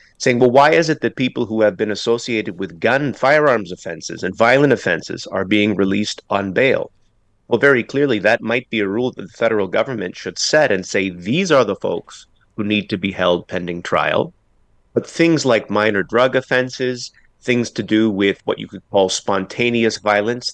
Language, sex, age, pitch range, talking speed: English, male, 30-49, 95-120 Hz, 195 wpm